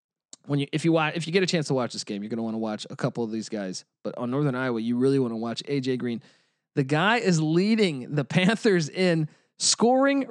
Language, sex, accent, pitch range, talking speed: English, male, American, 130-170 Hz, 255 wpm